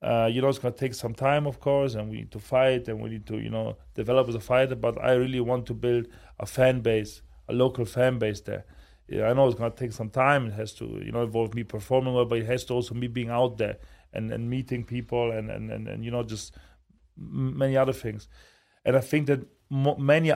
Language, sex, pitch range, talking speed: English, male, 115-135 Hz, 260 wpm